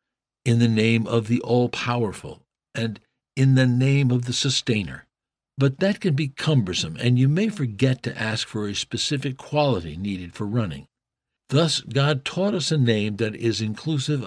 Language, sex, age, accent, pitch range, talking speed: English, male, 60-79, American, 110-140 Hz, 170 wpm